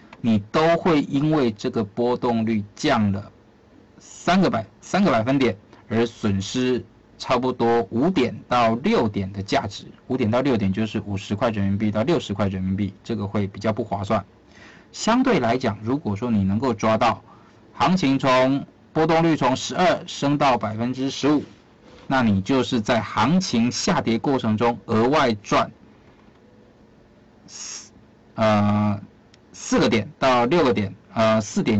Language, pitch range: Chinese, 105-130 Hz